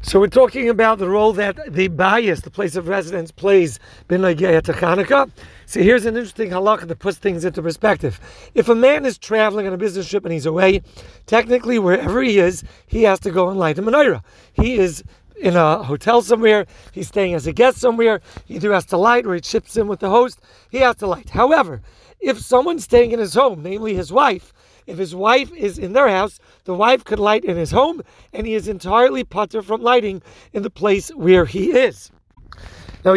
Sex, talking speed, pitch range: male, 210 wpm, 190-235 Hz